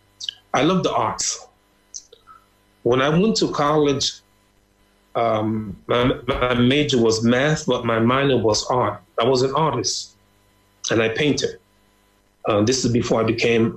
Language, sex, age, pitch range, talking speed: English, male, 30-49, 105-145 Hz, 145 wpm